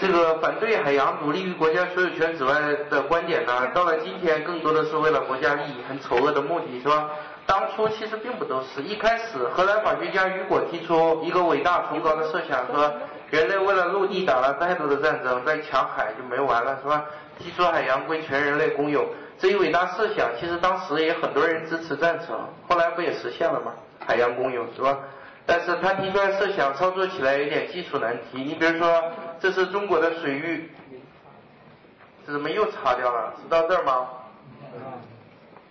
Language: Chinese